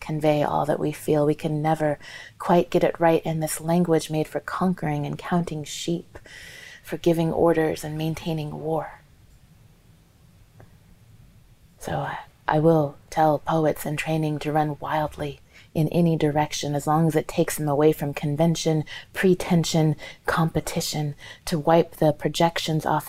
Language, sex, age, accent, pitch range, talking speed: English, female, 30-49, American, 150-165 Hz, 145 wpm